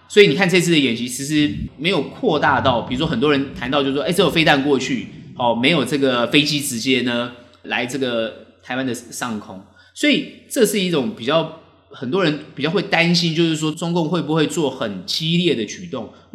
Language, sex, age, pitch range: Chinese, male, 30-49, 120-165 Hz